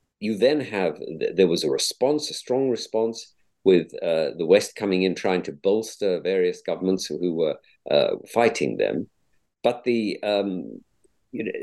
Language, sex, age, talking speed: English, male, 50-69, 150 wpm